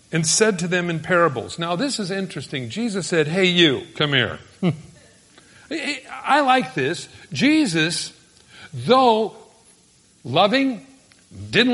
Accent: American